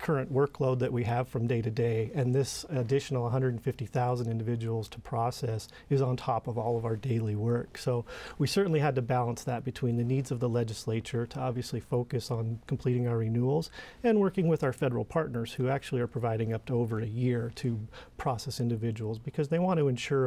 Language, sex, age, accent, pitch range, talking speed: English, male, 40-59, American, 115-135 Hz, 200 wpm